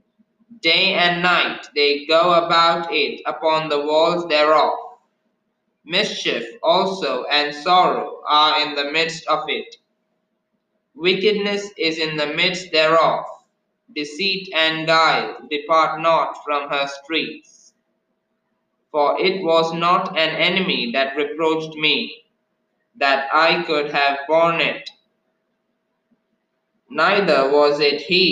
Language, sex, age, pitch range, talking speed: English, male, 20-39, 150-200 Hz, 115 wpm